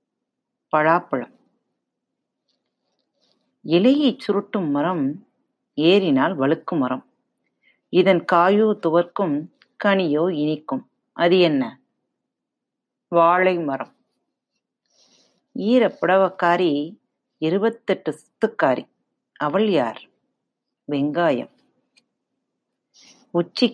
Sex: female